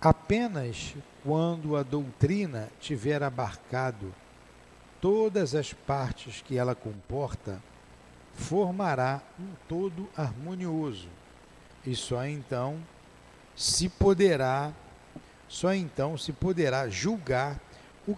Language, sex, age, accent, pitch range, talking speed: Portuguese, male, 60-79, Brazilian, 120-180 Hz, 80 wpm